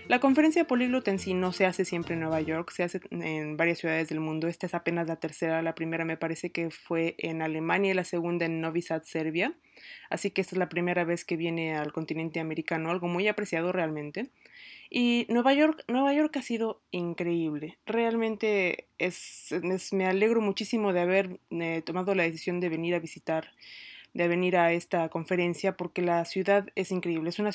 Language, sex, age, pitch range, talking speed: Spanish, female, 20-39, 165-205 Hz, 200 wpm